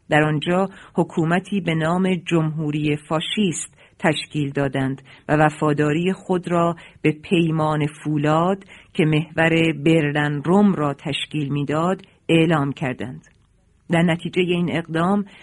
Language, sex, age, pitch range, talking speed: Persian, female, 40-59, 150-185 Hz, 115 wpm